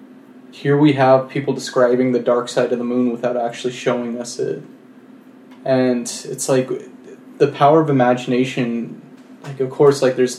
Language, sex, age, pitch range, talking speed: English, male, 20-39, 125-155 Hz, 160 wpm